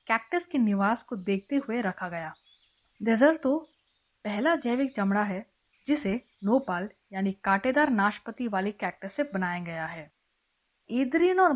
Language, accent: Hindi, native